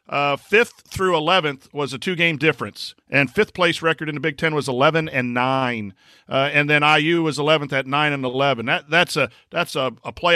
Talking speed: 220 wpm